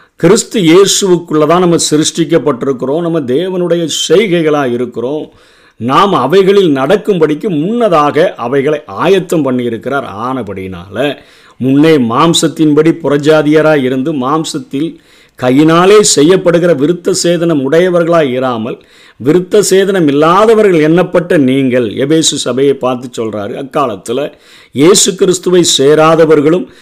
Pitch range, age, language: 130-175 Hz, 50-69, Tamil